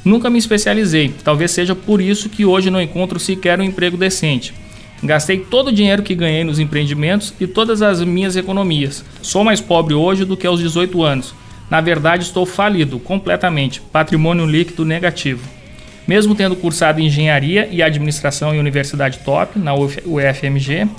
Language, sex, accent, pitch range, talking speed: Portuguese, male, Brazilian, 145-185 Hz, 160 wpm